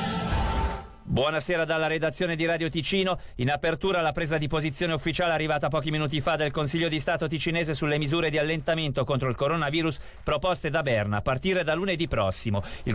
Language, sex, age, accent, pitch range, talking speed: Italian, male, 40-59, native, 140-180 Hz, 175 wpm